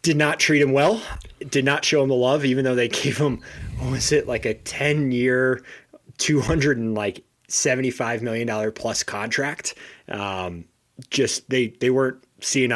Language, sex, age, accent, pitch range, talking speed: English, male, 30-49, American, 110-145 Hz, 170 wpm